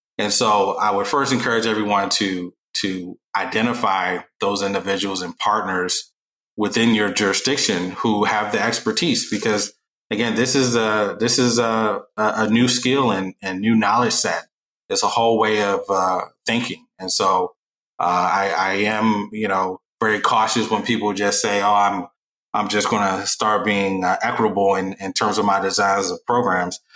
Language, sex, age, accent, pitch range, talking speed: English, male, 20-39, American, 95-115 Hz, 170 wpm